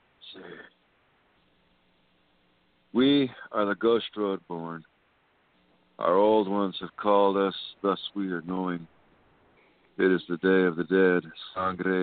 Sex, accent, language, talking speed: male, American, English, 120 wpm